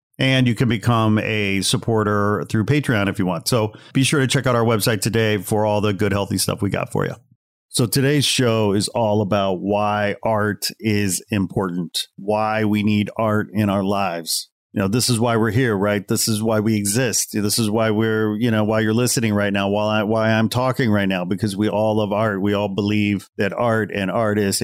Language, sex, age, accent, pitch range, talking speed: English, male, 40-59, American, 105-120 Hz, 215 wpm